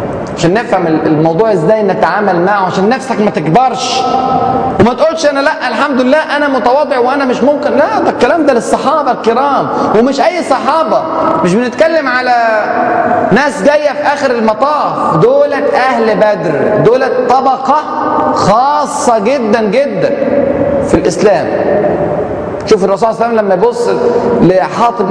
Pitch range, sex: 195-275 Hz, male